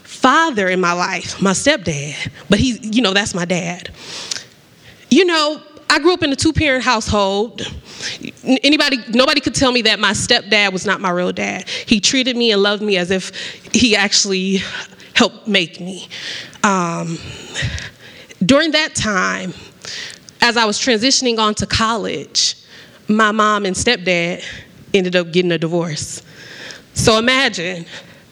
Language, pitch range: English, 185-255 Hz